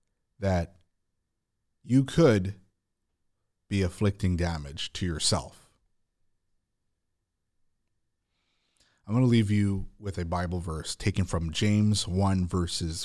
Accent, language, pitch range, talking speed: American, English, 90-110 Hz, 100 wpm